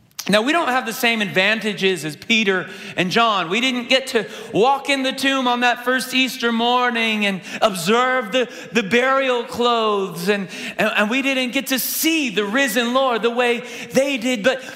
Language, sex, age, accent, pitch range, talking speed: English, male, 30-49, American, 220-265 Hz, 185 wpm